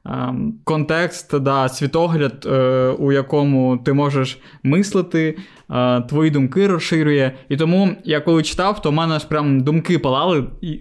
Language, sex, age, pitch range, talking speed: Ukrainian, male, 20-39, 135-160 Hz, 135 wpm